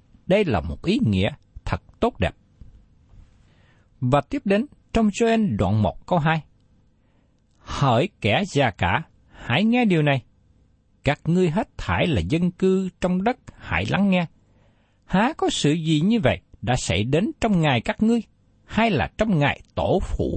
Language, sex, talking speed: Vietnamese, male, 165 wpm